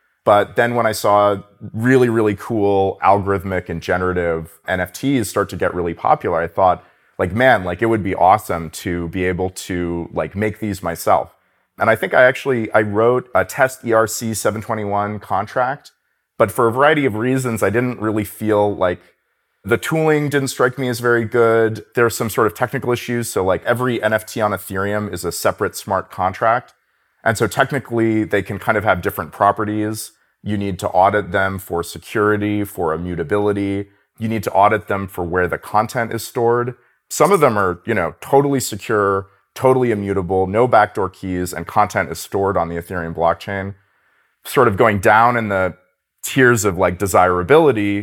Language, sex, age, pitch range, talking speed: English, male, 30-49, 95-115 Hz, 180 wpm